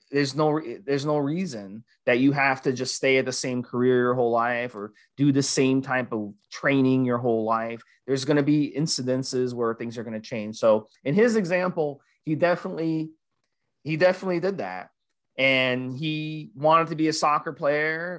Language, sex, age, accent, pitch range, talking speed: English, male, 30-49, American, 125-150 Hz, 190 wpm